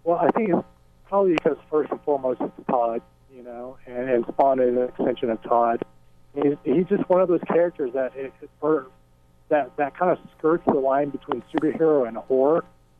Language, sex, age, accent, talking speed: English, male, 40-59, American, 200 wpm